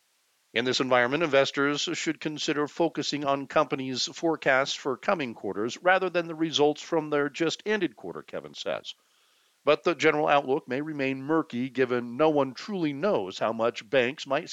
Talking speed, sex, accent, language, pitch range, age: 160 wpm, male, American, English, 120-160 Hz, 50-69